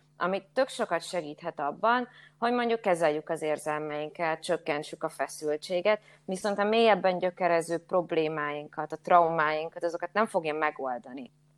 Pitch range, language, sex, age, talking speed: 155-195 Hz, Hungarian, female, 20-39, 125 wpm